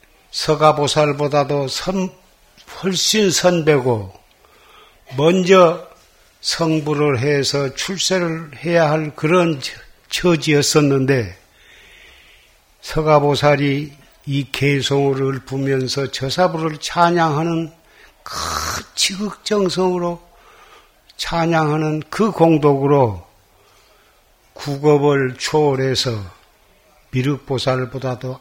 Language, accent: Korean, native